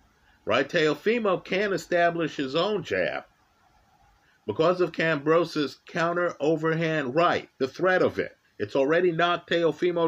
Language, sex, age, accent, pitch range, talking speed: English, male, 50-69, American, 150-175 Hz, 125 wpm